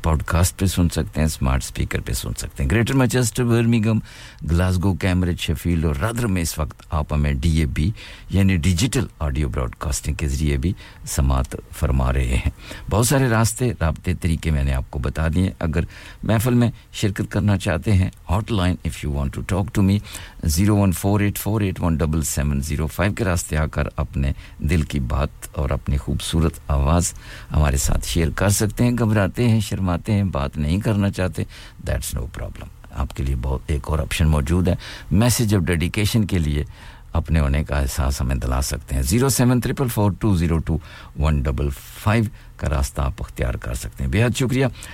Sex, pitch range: male, 75-105 Hz